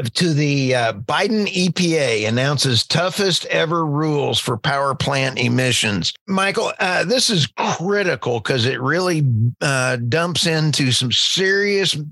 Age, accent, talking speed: 50-69, American, 130 wpm